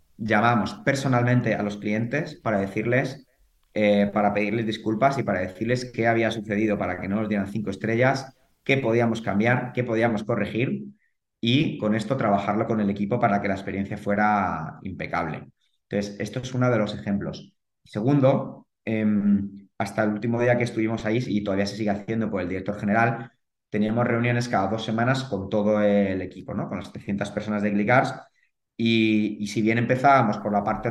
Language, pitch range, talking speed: Spanish, 100-115 Hz, 180 wpm